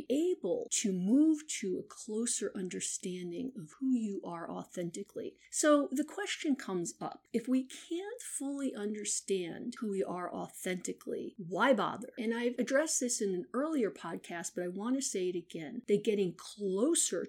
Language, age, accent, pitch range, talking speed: English, 50-69, American, 200-285 Hz, 160 wpm